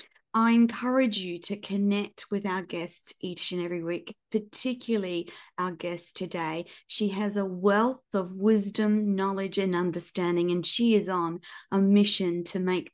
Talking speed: 155 wpm